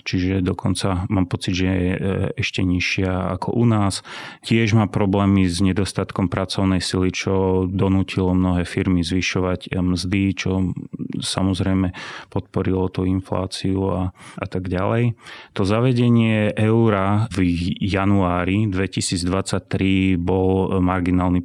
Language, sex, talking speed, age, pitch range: Slovak, male, 115 wpm, 30-49, 90-100 Hz